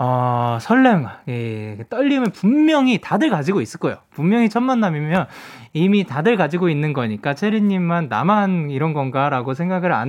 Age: 20-39